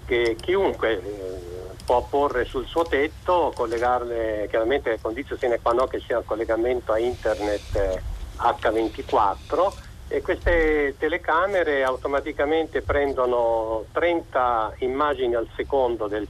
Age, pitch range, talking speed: 50-69, 105-140 Hz, 125 wpm